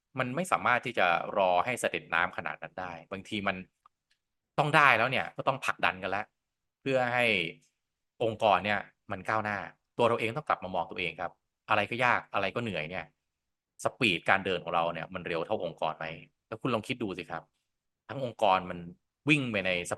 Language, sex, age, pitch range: Thai, male, 20-39, 90-120 Hz